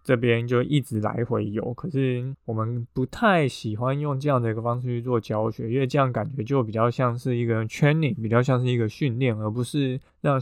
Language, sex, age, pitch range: Chinese, male, 20-39, 115-140 Hz